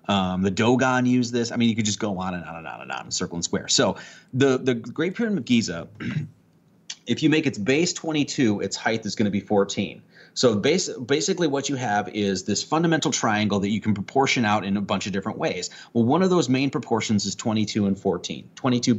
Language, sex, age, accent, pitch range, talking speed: English, male, 30-49, American, 105-140 Hz, 230 wpm